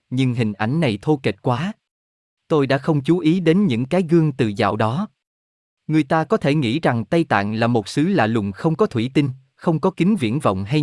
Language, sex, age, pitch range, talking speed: Vietnamese, male, 20-39, 110-165 Hz, 235 wpm